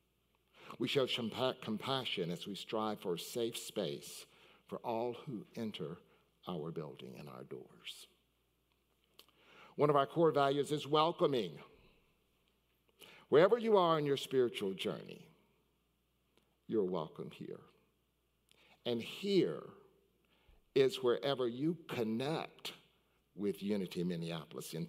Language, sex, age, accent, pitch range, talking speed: English, male, 60-79, American, 105-165 Hz, 110 wpm